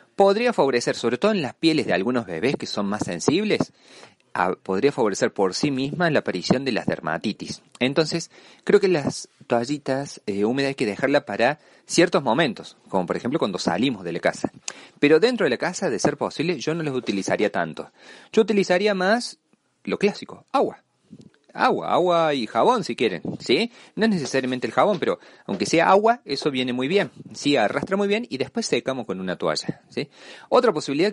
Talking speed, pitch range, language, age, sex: 185 wpm, 120-195 Hz, Spanish, 40-59, male